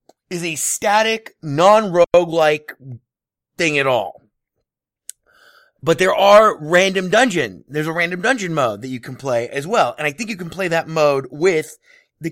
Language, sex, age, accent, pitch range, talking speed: English, male, 30-49, American, 135-195 Hz, 160 wpm